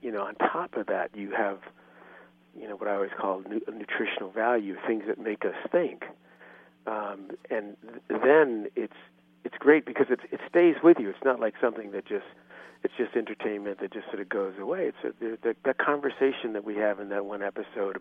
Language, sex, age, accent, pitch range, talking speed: English, male, 50-69, American, 100-115 Hz, 205 wpm